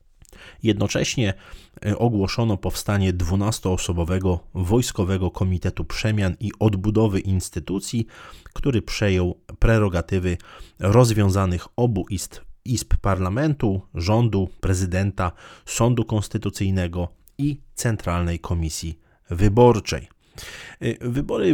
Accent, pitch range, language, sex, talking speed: native, 90-110 Hz, Polish, male, 70 wpm